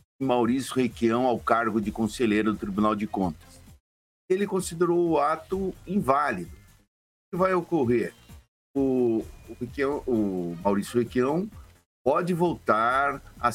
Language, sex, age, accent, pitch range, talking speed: Portuguese, male, 60-79, Brazilian, 100-155 Hz, 115 wpm